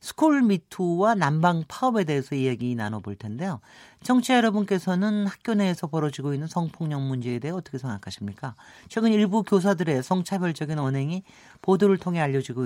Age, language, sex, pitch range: 40-59, Korean, male, 135-200 Hz